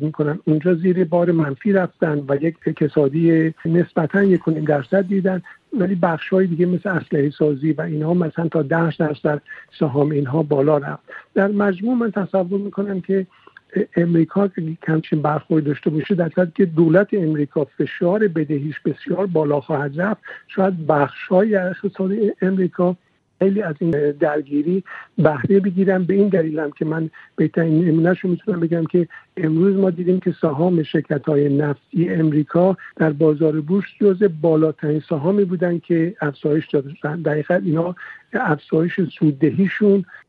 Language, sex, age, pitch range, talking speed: Persian, male, 60-79, 155-185 Hz, 140 wpm